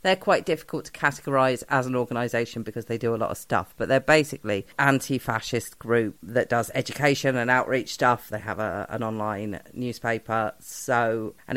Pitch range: 110-130 Hz